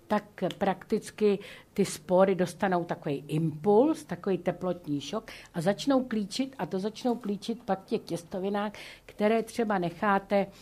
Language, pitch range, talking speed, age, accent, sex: Czech, 145-180 Hz, 130 wpm, 50-69, native, female